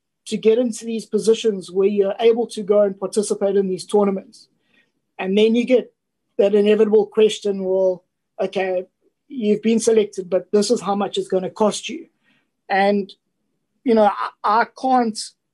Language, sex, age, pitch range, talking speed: English, male, 20-39, 200-230 Hz, 165 wpm